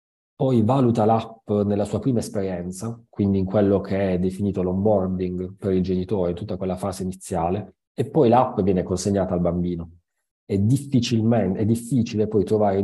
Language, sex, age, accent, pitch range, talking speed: Italian, male, 30-49, native, 90-105 Hz, 155 wpm